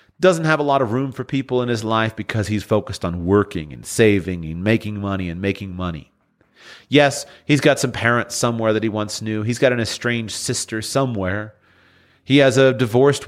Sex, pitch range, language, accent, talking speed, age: male, 100-130 Hz, English, American, 200 wpm, 40-59